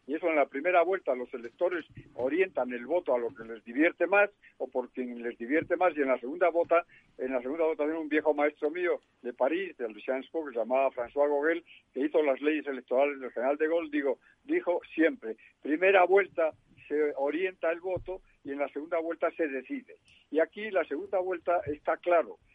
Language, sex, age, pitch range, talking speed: Spanish, male, 50-69, 135-165 Hz, 210 wpm